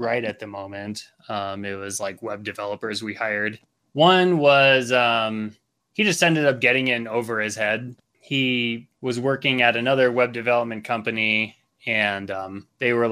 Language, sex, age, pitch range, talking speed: English, male, 20-39, 105-125 Hz, 165 wpm